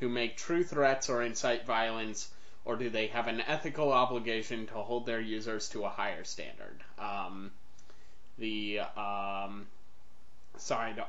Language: English